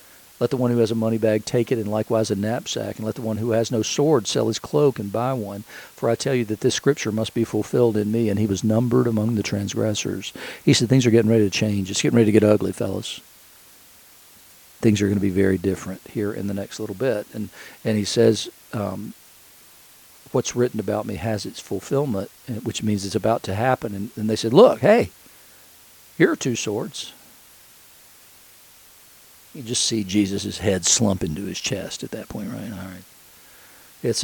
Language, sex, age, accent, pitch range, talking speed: English, male, 50-69, American, 105-125 Hz, 210 wpm